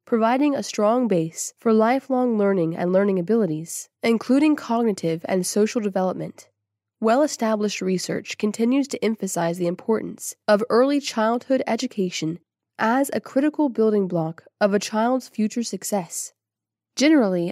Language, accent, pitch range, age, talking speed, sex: English, American, 185-240 Hz, 20-39, 125 wpm, female